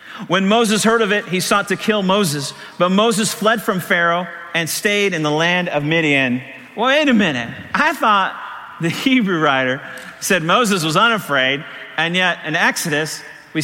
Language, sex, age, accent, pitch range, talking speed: English, male, 50-69, American, 165-230 Hz, 170 wpm